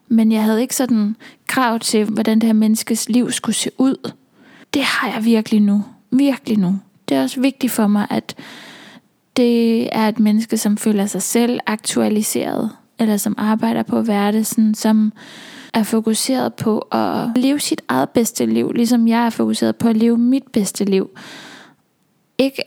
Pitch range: 210-240 Hz